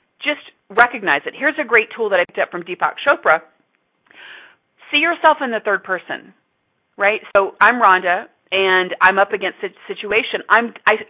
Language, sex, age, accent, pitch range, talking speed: English, female, 40-59, American, 180-250 Hz, 175 wpm